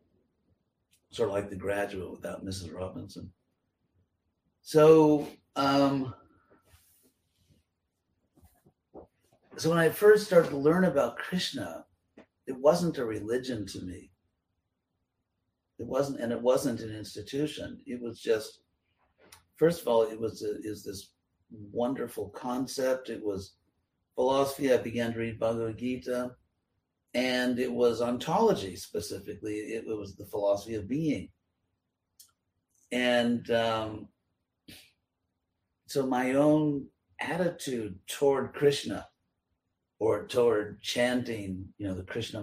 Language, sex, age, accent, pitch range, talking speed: English, male, 60-79, American, 95-130 Hz, 110 wpm